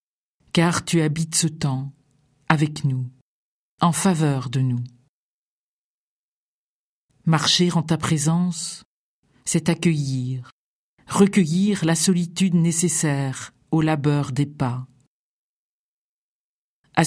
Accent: French